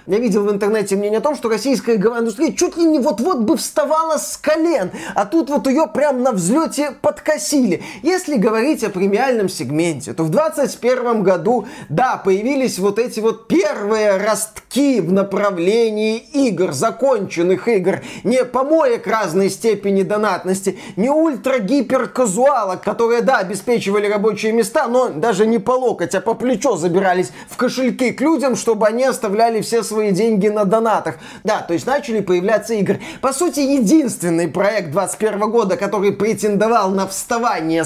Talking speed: 155 wpm